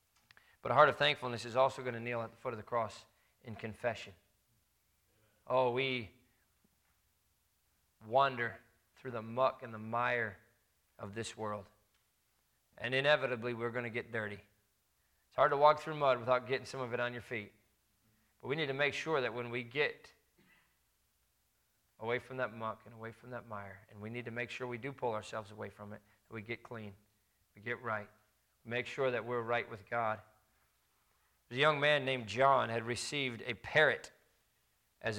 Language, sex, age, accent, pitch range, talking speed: English, male, 40-59, American, 110-135 Hz, 180 wpm